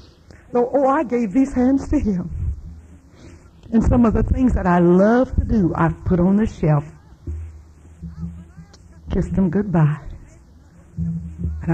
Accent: American